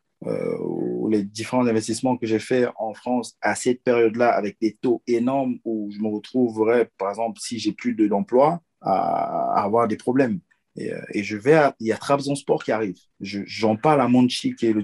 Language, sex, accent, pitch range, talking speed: French, male, French, 105-130 Hz, 215 wpm